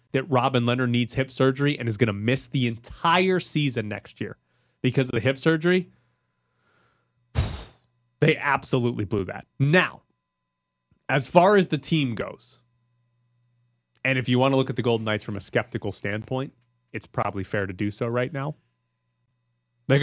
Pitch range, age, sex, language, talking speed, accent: 105-135 Hz, 20-39, male, English, 165 wpm, American